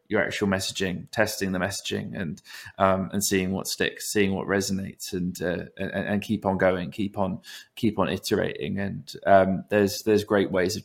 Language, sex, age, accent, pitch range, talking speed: English, male, 20-39, British, 95-105 Hz, 190 wpm